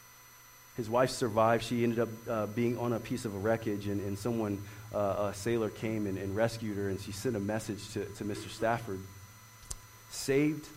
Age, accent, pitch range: 30-49, American, 105-125 Hz